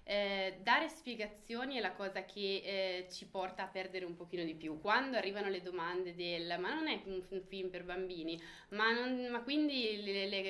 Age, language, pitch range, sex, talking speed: 20-39, Italian, 180-215 Hz, female, 200 wpm